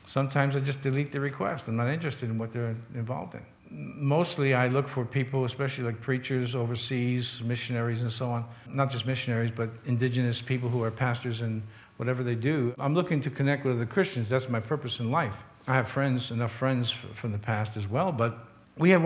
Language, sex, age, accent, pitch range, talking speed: English, male, 60-79, American, 120-155 Hz, 205 wpm